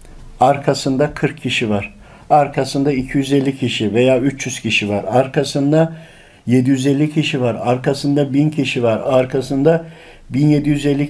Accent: native